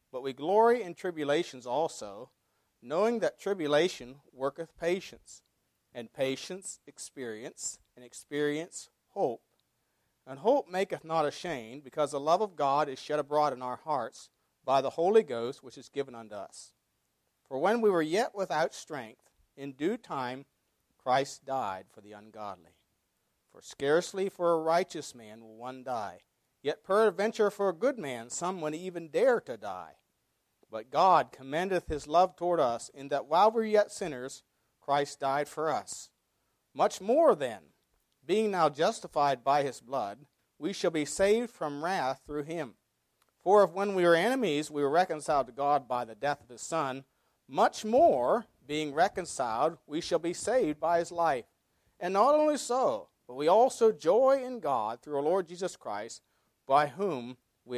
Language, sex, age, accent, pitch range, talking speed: English, male, 50-69, American, 130-185 Hz, 165 wpm